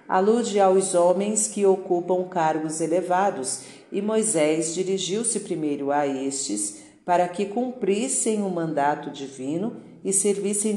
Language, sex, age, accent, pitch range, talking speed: Portuguese, female, 50-69, Brazilian, 155-195 Hz, 115 wpm